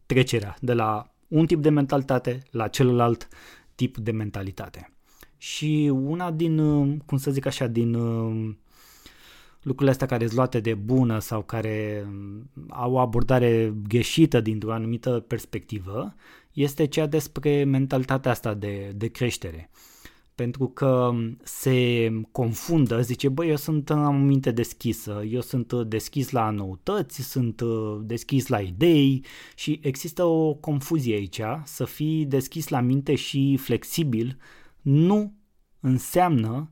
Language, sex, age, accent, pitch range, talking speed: Romanian, male, 20-39, native, 115-145 Hz, 125 wpm